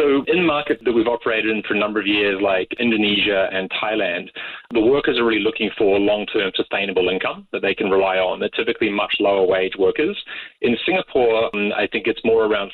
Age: 30-49